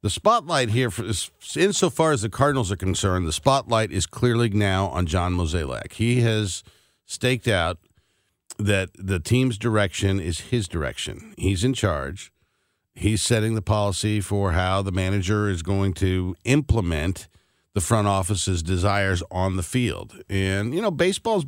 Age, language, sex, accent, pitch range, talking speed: 50-69, English, male, American, 95-120 Hz, 155 wpm